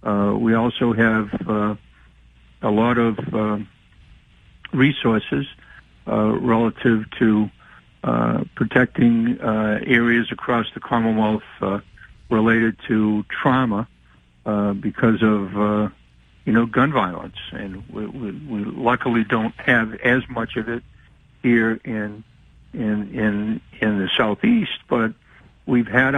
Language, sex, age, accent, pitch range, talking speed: English, male, 60-79, American, 105-115 Hz, 120 wpm